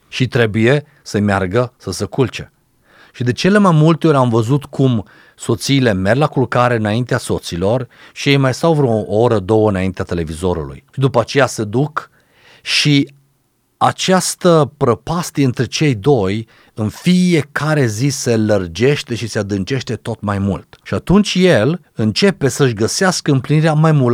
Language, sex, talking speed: Romanian, male, 155 wpm